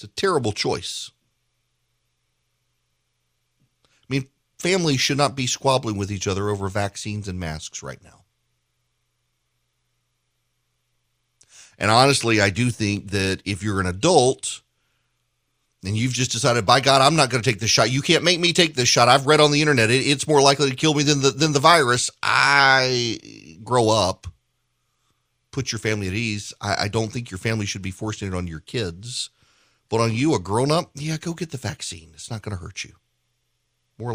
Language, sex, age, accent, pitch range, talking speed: English, male, 40-59, American, 100-135 Hz, 180 wpm